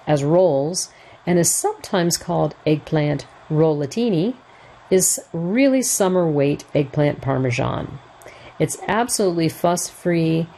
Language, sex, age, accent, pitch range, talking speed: English, female, 50-69, American, 150-195 Hz, 95 wpm